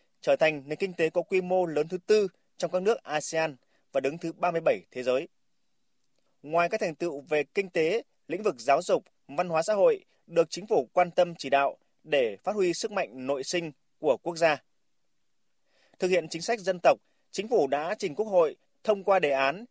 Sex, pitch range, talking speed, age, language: male, 150-190 Hz, 210 wpm, 20-39, Vietnamese